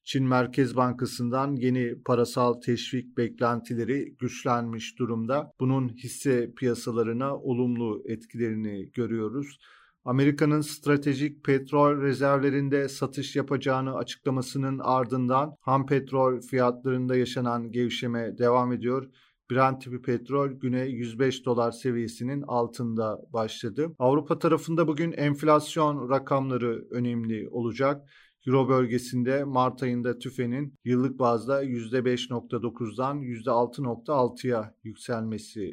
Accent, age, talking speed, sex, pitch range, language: native, 40-59, 95 wpm, male, 120-140 Hz, Turkish